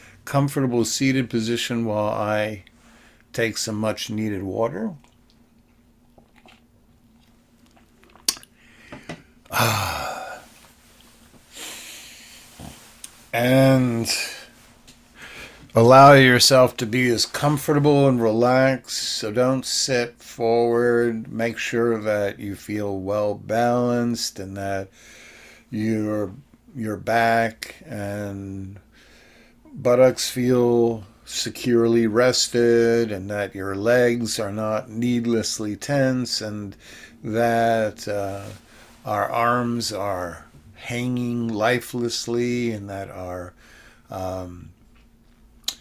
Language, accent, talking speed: English, American, 80 wpm